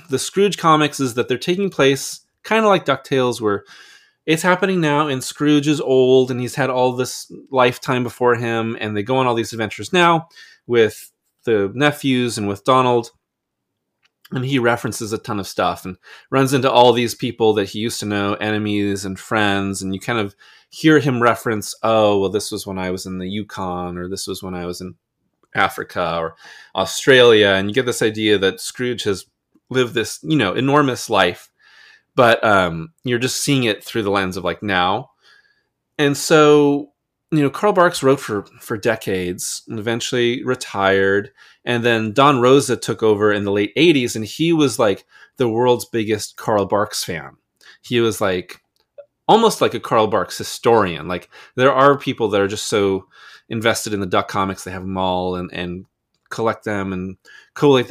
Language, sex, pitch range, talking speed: English, male, 100-135 Hz, 190 wpm